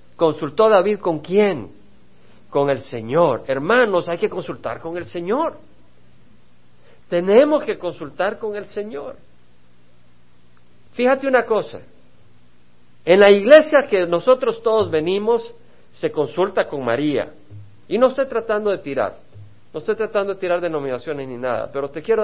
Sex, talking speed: male, 140 wpm